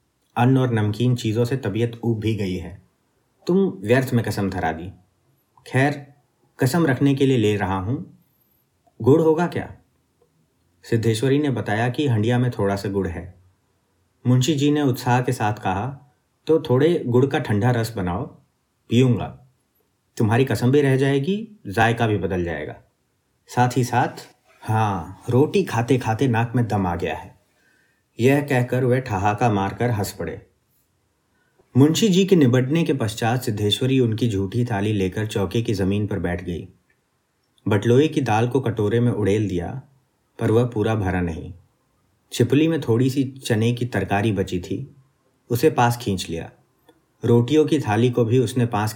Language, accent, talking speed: Hindi, native, 160 wpm